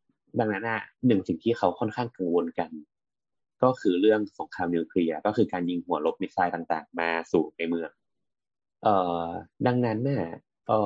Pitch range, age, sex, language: 90-115 Hz, 20-39, male, Thai